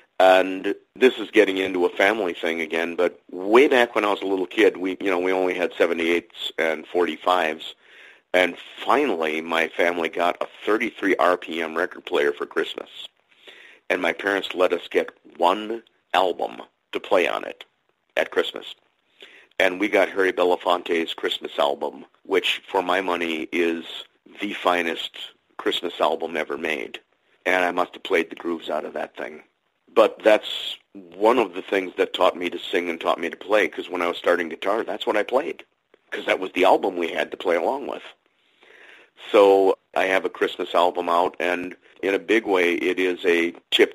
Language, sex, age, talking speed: English, male, 40-59, 185 wpm